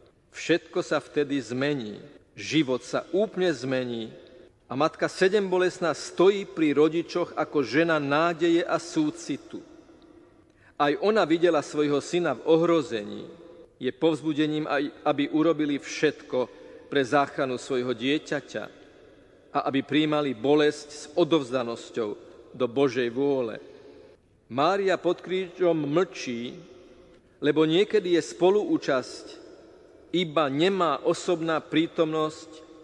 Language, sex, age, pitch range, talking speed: Slovak, male, 40-59, 140-170 Hz, 105 wpm